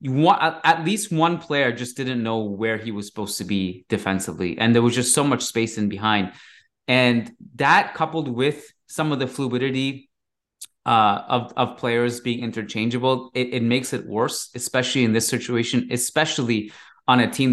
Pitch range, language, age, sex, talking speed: 105-125 Hz, English, 20-39, male, 180 wpm